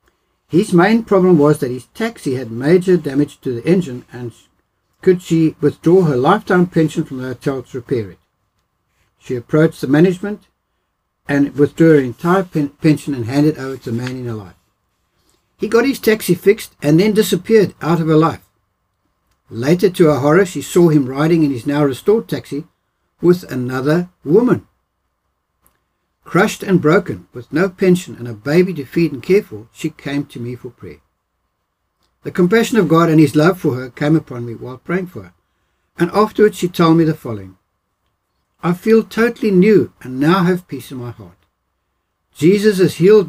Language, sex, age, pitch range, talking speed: English, male, 60-79, 120-175 Hz, 180 wpm